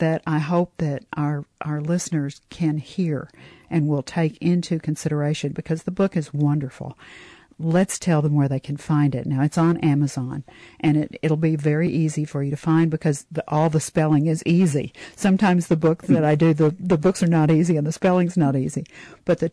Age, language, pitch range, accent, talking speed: 50-69, English, 145-165 Hz, American, 205 wpm